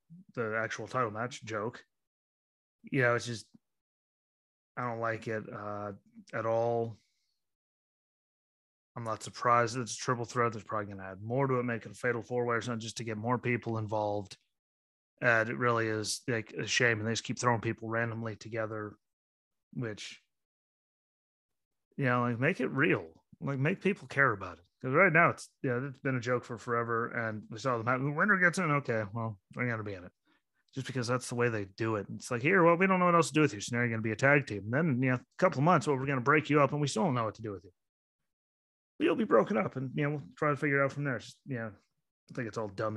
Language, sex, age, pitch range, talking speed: English, male, 30-49, 110-130 Hz, 255 wpm